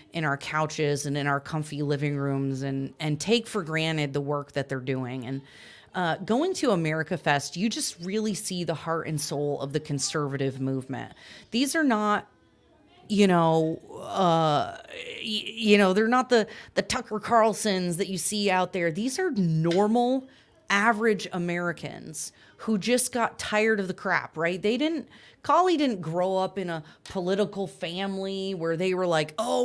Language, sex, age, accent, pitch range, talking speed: English, female, 30-49, American, 160-225 Hz, 170 wpm